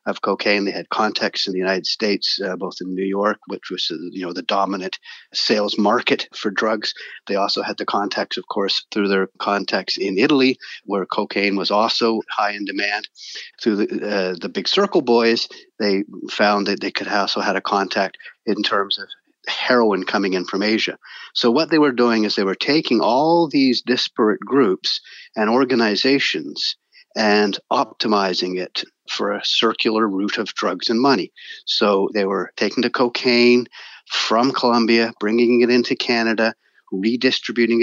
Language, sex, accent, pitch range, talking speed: English, male, American, 105-120 Hz, 170 wpm